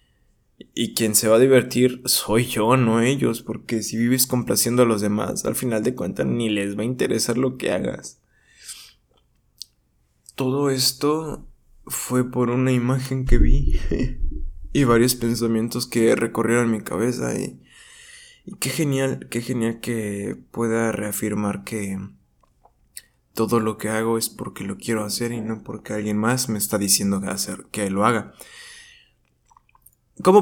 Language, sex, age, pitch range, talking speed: Spanish, male, 20-39, 105-125 Hz, 150 wpm